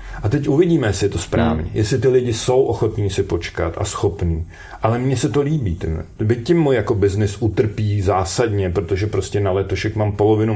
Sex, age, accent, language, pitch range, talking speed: male, 40-59, native, Czech, 95-125 Hz, 195 wpm